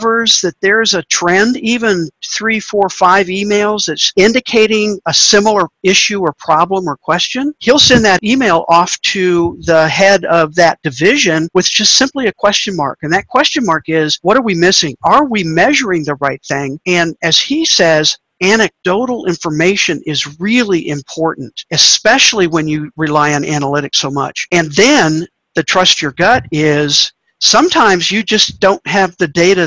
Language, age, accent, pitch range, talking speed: English, 50-69, American, 155-195 Hz, 165 wpm